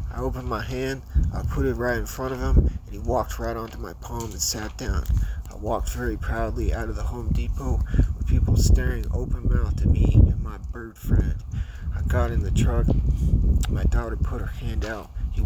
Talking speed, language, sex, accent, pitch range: 210 wpm, English, male, American, 75-100 Hz